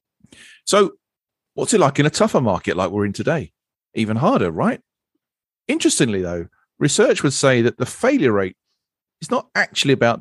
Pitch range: 105-160 Hz